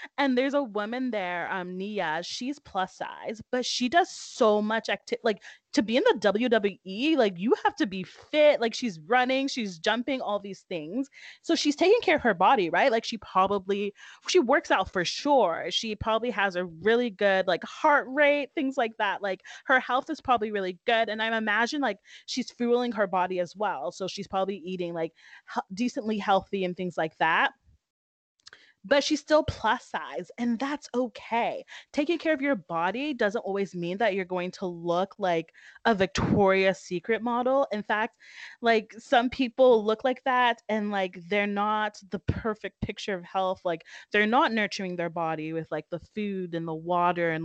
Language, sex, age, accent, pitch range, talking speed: English, female, 20-39, American, 185-245 Hz, 190 wpm